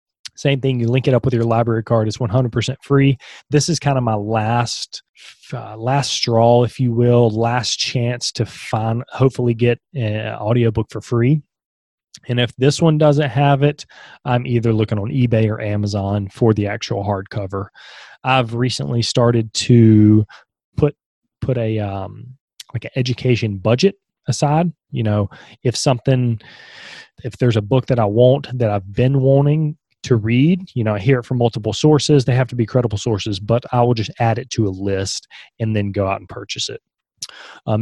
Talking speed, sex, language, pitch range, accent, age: 185 wpm, male, English, 110-130 Hz, American, 20-39